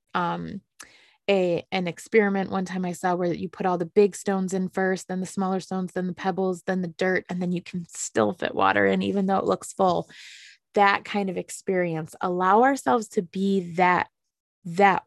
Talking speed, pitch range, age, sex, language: 200 wpm, 180-205 Hz, 20-39, female, English